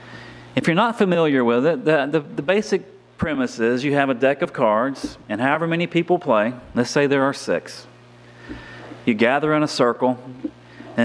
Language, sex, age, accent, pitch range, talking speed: English, male, 40-59, American, 115-155 Hz, 180 wpm